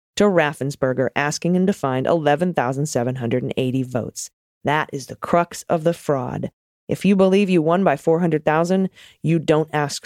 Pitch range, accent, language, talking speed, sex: 135-175 Hz, American, English, 150 wpm, female